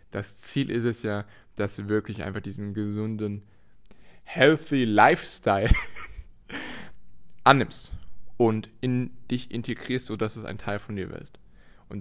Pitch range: 105-130 Hz